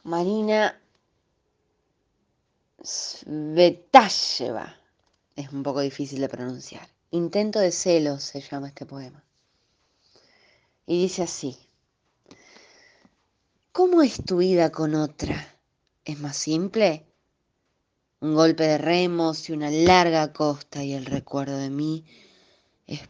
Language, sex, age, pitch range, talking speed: Spanish, female, 20-39, 140-175 Hz, 105 wpm